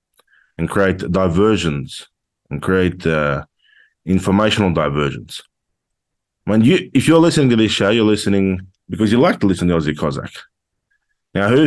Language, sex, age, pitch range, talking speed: English, male, 20-39, 85-105 Hz, 140 wpm